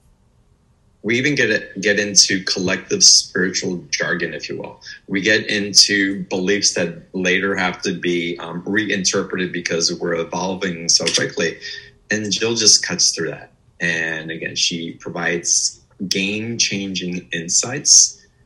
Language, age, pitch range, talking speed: English, 20-39, 90-100 Hz, 130 wpm